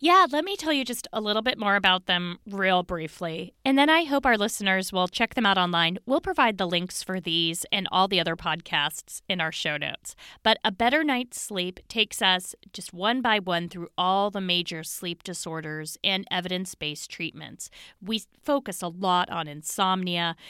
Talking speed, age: 195 wpm, 30-49